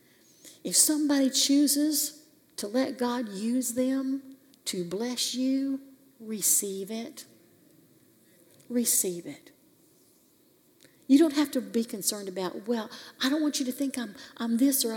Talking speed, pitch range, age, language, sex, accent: 130 wpm, 255-310 Hz, 50-69, English, female, American